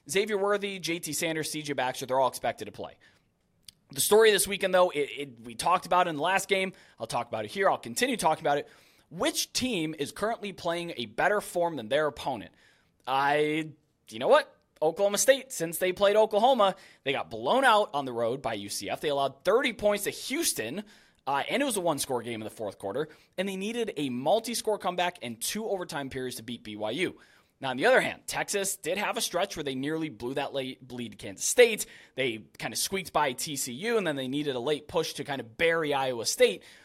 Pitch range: 135-205 Hz